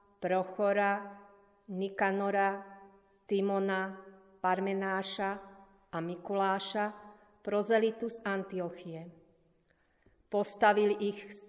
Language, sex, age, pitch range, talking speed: Slovak, female, 40-59, 185-200 Hz, 55 wpm